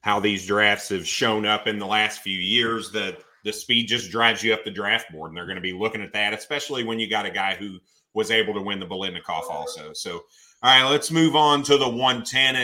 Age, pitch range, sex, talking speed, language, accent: 30-49, 105-125 Hz, male, 245 wpm, English, American